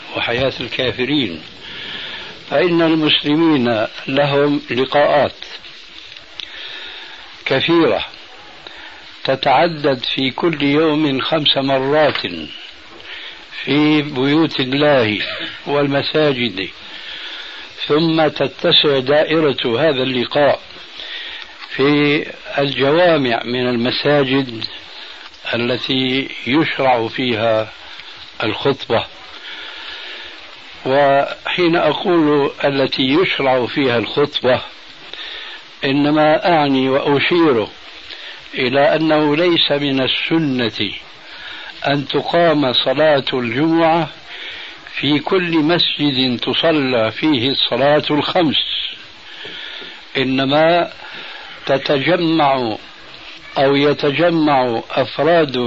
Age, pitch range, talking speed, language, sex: 60-79, 130-155 Hz, 65 wpm, Arabic, male